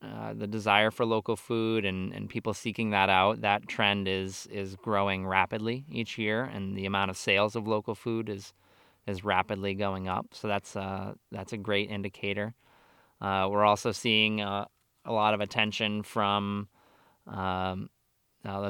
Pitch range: 100-110 Hz